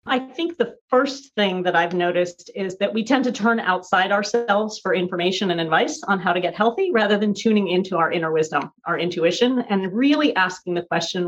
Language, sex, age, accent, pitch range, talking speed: English, female, 40-59, American, 180-240 Hz, 205 wpm